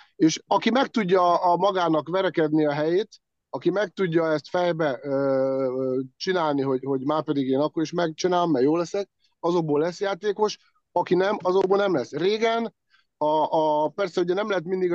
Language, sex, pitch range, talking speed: Hungarian, male, 155-190 Hz, 170 wpm